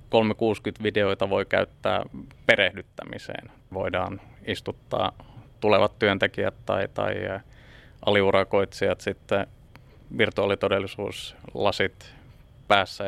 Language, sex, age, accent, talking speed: Finnish, male, 20-39, native, 60 wpm